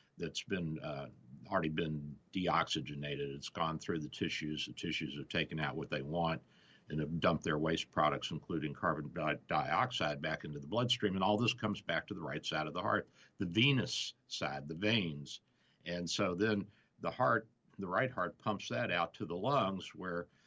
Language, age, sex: English, 60-79, male